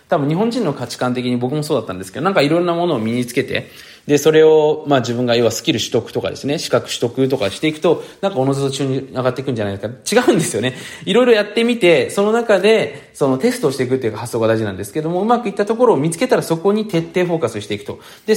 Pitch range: 115-180 Hz